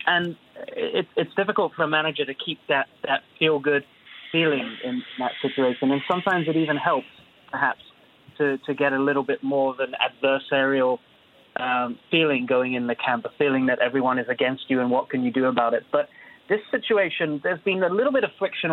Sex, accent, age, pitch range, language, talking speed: male, British, 30-49, 135-160 Hz, English, 195 wpm